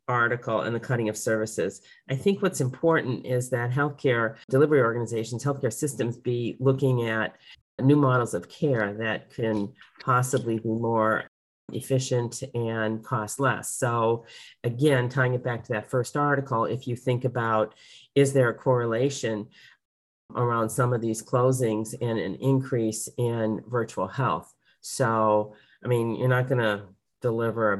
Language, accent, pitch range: English, American, 105-125 Hz